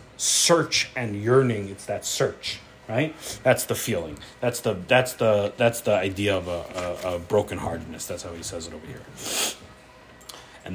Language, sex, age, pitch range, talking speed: English, male, 30-49, 105-165 Hz, 150 wpm